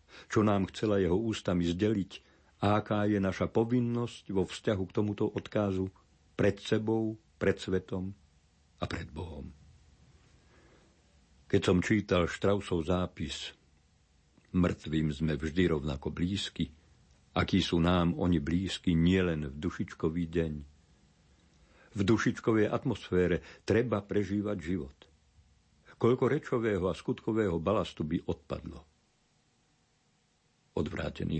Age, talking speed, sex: 50-69, 105 wpm, male